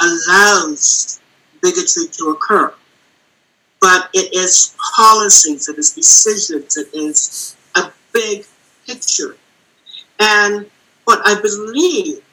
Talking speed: 95 wpm